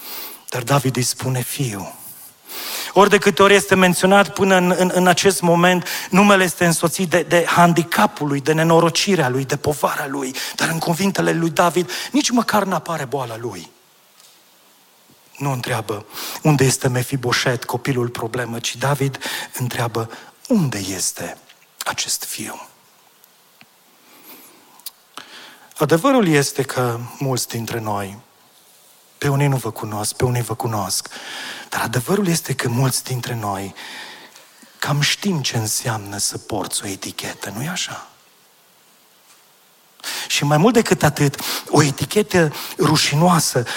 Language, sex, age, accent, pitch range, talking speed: Romanian, male, 40-59, native, 125-180 Hz, 130 wpm